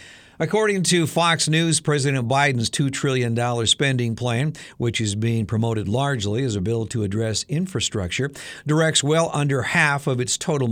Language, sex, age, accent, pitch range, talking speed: English, male, 60-79, American, 110-145 Hz, 155 wpm